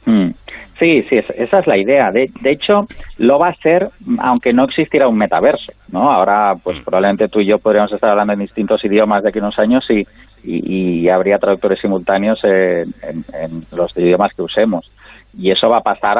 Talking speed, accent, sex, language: 200 wpm, Spanish, male, Spanish